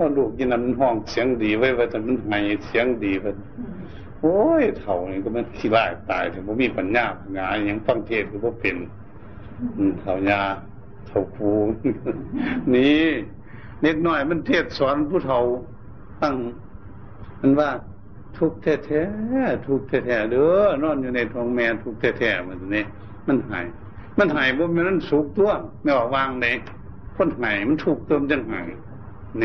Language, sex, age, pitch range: Thai, male, 60-79, 100-135 Hz